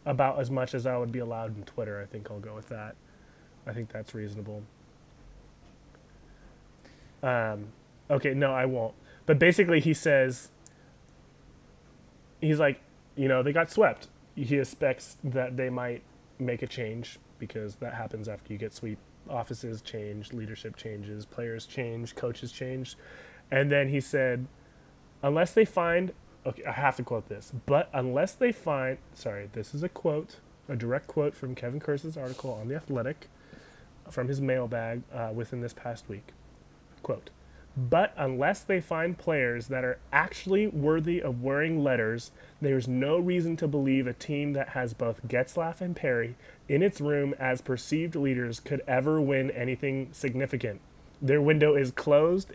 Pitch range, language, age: 120-145 Hz, English, 20-39